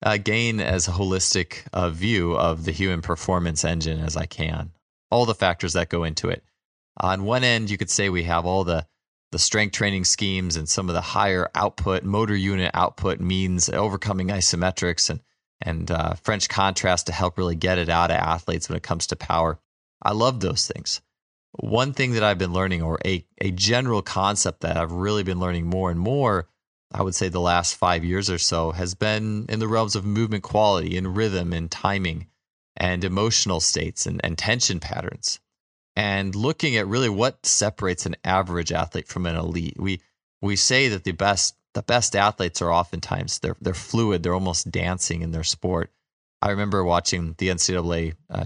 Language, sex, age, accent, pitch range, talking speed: English, male, 20-39, American, 85-105 Hz, 190 wpm